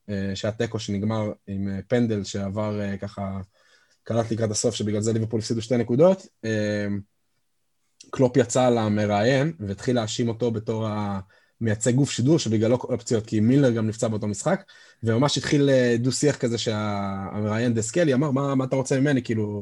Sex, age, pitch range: male, 20-39, 105-130 Hz